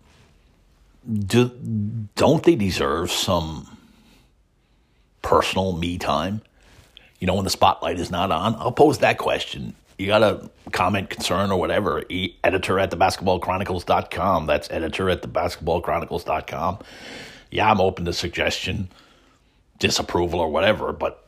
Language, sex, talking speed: English, male, 130 wpm